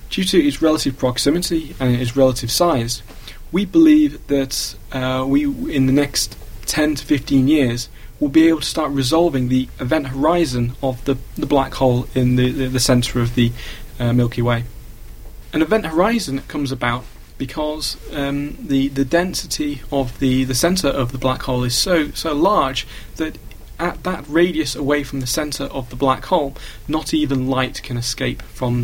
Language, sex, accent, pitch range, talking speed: English, male, British, 120-145 Hz, 175 wpm